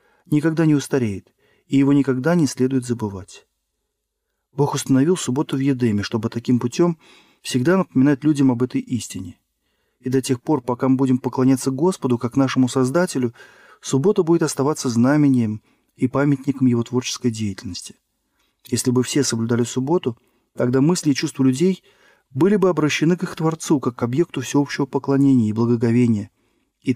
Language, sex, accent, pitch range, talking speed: Russian, male, native, 120-150 Hz, 150 wpm